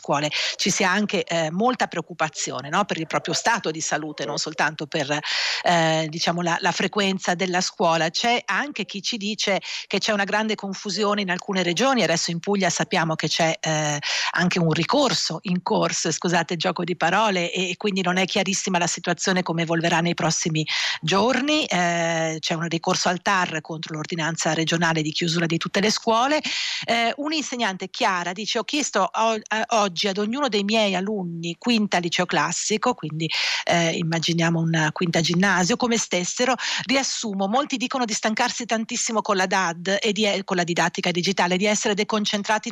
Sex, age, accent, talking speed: female, 50-69, native, 170 wpm